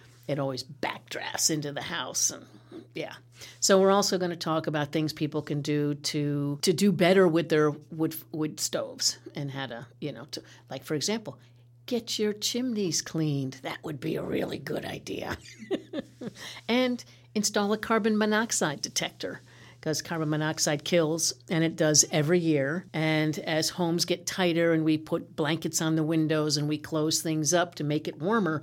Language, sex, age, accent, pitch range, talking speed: English, female, 50-69, American, 145-180 Hz, 175 wpm